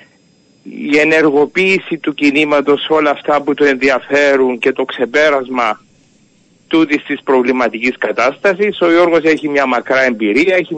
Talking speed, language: 130 wpm, Greek